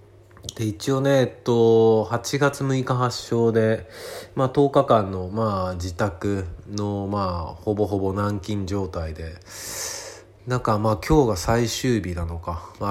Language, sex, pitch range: Japanese, male, 90-110 Hz